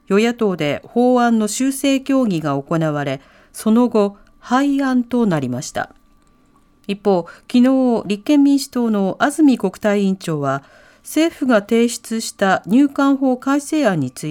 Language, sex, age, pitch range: Japanese, female, 40-59, 185-260 Hz